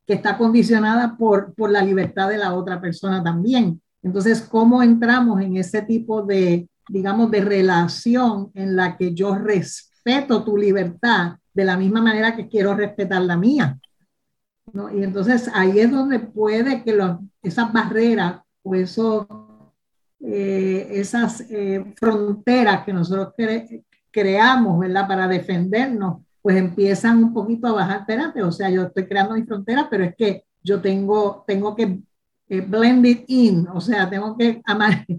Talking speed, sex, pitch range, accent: 160 wpm, female, 190-230 Hz, American